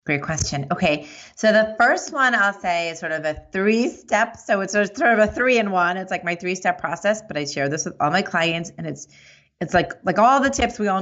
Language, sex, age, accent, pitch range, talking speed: English, female, 30-49, American, 165-215 Hz, 255 wpm